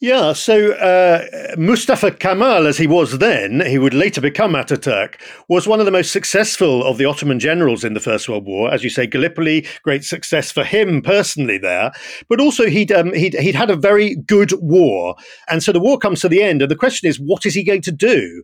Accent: British